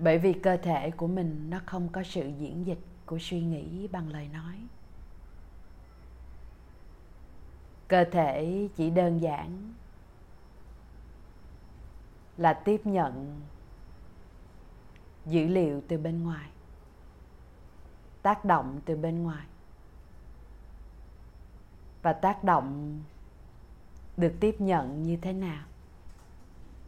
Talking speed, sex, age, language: 100 wpm, female, 20-39, Vietnamese